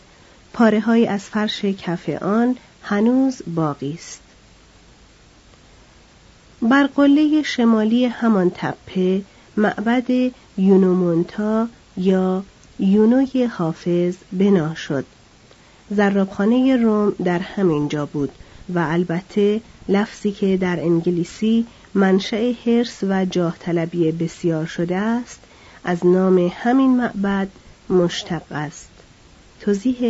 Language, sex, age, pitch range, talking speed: Persian, female, 40-59, 175-225 Hz, 95 wpm